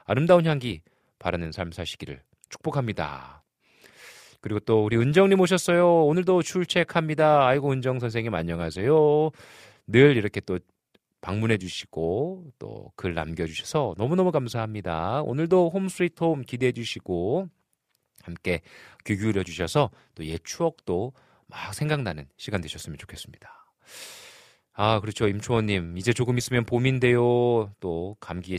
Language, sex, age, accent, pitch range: Korean, male, 40-59, native, 95-150 Hz